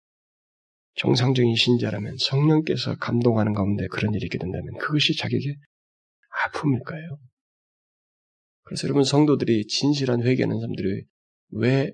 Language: Korean